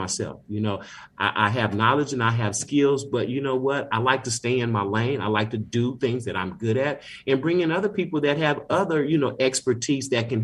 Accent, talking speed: American, 255 wpm